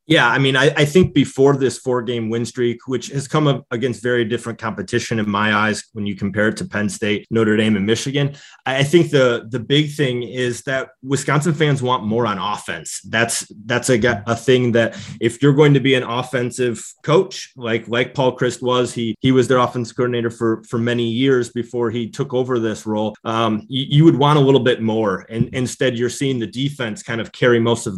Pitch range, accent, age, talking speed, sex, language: 115-130 Hz, American, 30-49, 220 wpm, male, English